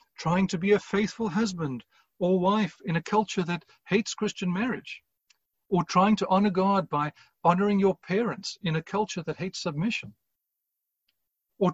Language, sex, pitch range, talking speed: English, male, 155-210 Hz, 160 wpm